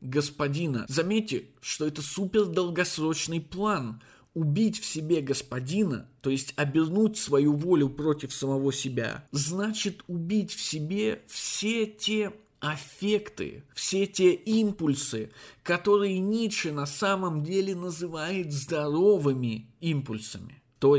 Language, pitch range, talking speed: Russian, 140-195 Hz, 110 wpm